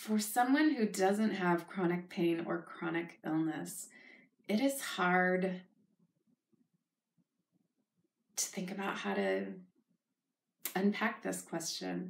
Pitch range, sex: 165-195 Hz, female